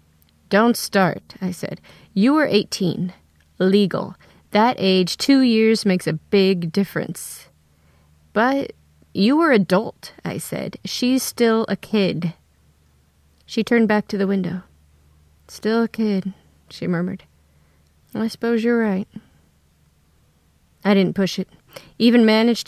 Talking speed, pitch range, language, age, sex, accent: 125 wpm, 175-220 Hz, English, 30-49, female, American